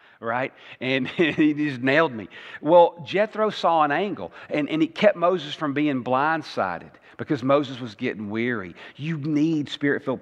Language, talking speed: English, 160 wpm